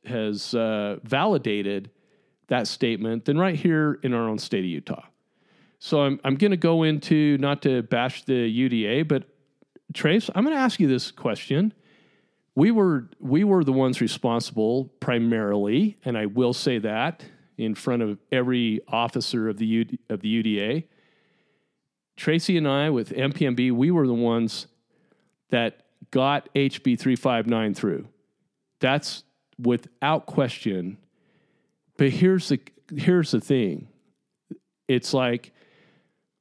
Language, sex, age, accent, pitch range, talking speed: English, male, 40-59, American, 115-155 Hz, 135 wpm